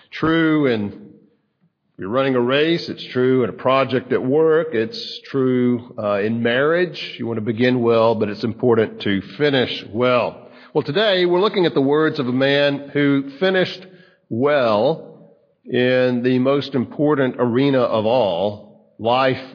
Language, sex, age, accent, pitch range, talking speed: English, male, 50-69, American, 120-145 Hz, 155 wpm